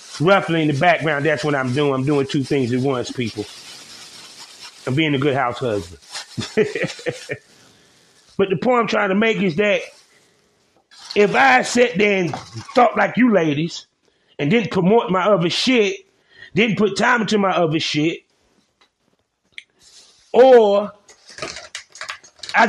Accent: American